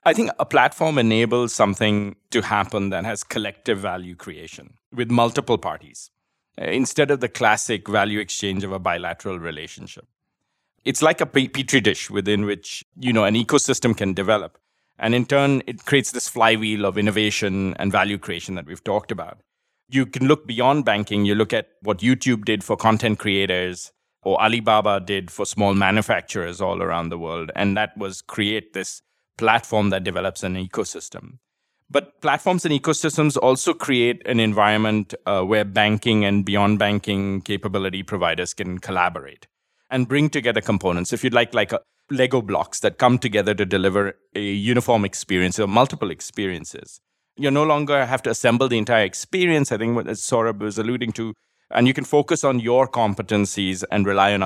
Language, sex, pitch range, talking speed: English, male, 100-125 Hz, 170 wpm